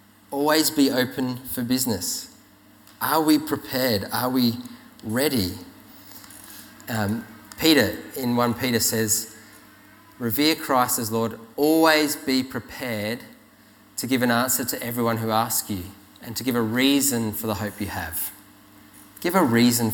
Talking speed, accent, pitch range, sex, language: 140 wpm, Australian, 110-155 Hz, male, English